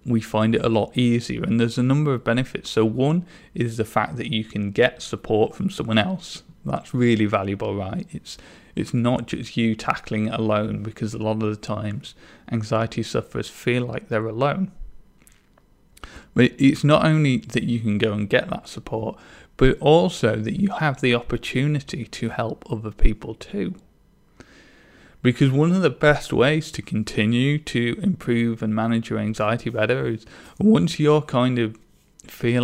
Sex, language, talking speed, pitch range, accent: male, English, 175 wpm, 110-135 Hz, British